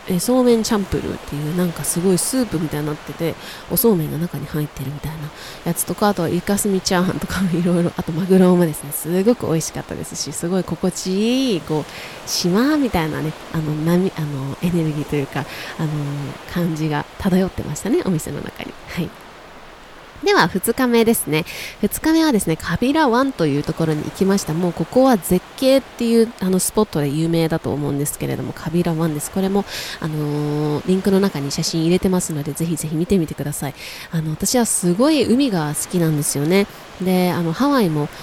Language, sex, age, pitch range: Japanese, female, 20-39, 155-225 Hz